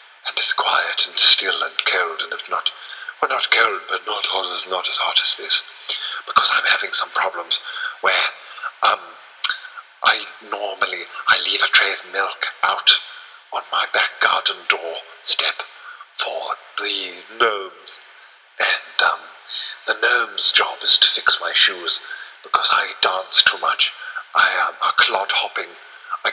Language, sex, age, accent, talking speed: English, male, 50-69, British, 150 wpm